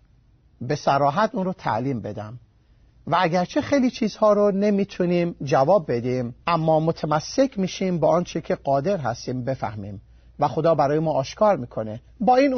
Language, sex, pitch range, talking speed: Persian, male, 135-220 Hz, 150 wpm